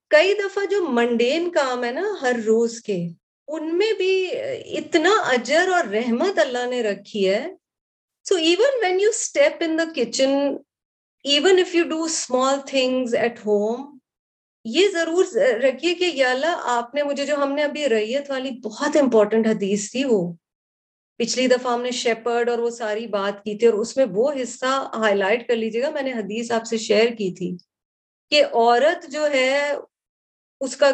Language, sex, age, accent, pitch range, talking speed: English, female, 30-49, Indian, 235-320 Hz, 120 wpm